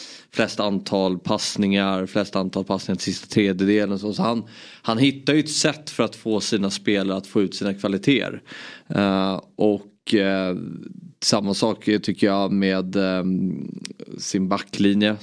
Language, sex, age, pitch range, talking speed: Swedish, male, 20-39, 95-110 Hz, 145 wpm